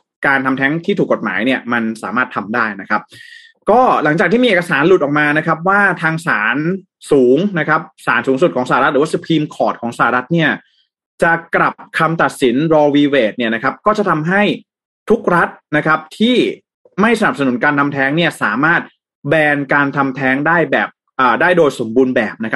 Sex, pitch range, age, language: male, 135-170 Hz, 20-39, Thai